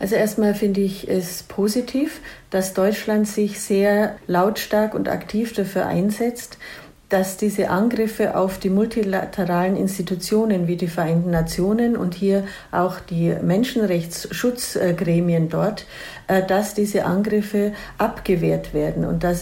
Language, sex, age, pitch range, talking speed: English, female, 50-69, 175-210 Hz, 120 wpm